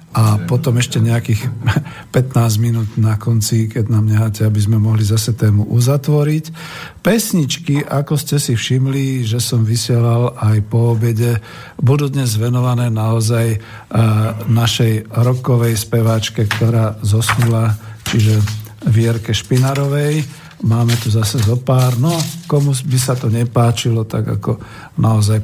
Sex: male